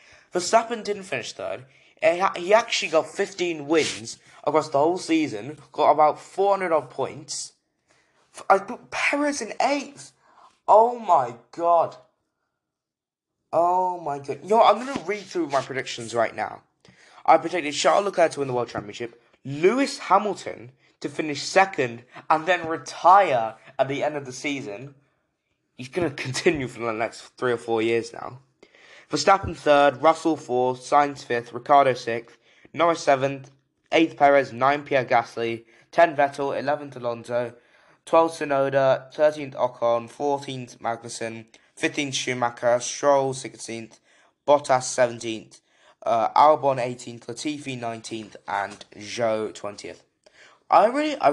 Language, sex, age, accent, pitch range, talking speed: English, male, 10-29, British, 120-165 Hz, 135 wpm